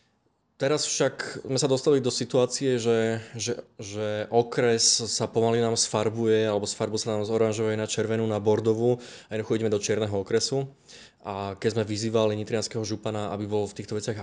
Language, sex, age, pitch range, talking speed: Slovak, male, 20-39, 105-115 Hz, 175 wpm